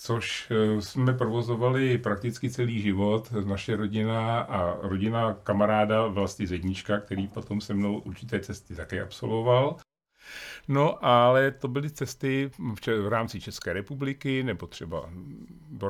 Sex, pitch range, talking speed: male, 100-120 Hz, 130 wpm